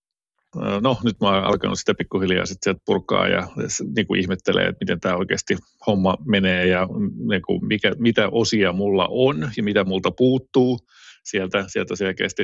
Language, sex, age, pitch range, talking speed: Finnish, male, 30-49, 95-120 Hz, 155 wpm